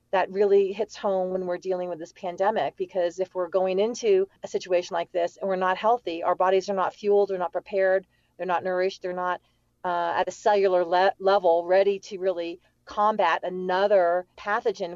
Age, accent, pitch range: 40-59, American, 185-245 Hz